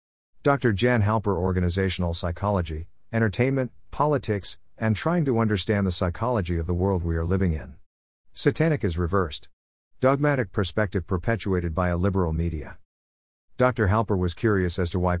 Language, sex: English, male